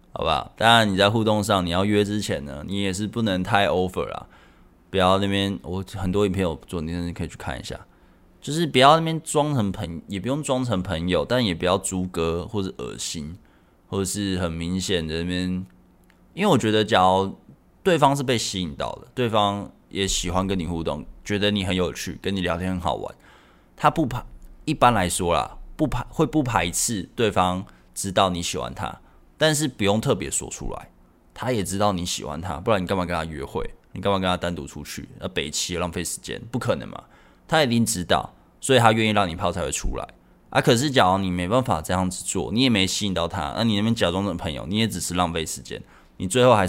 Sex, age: male, 20-39